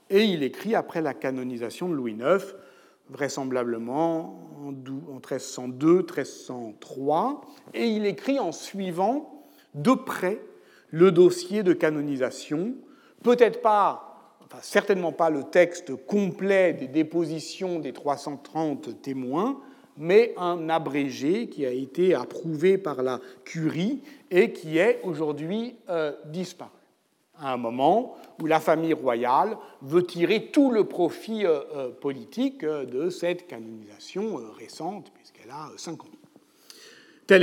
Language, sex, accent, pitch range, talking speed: French, male, French, 150-230 Hz, 115 wpm